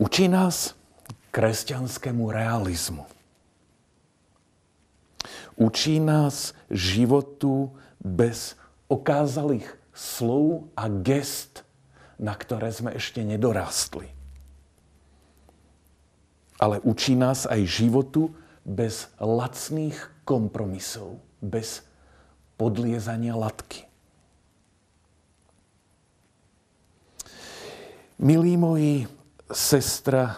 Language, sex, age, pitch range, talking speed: Slovak, male, 50-69, 95-135 Hz, 60 wpm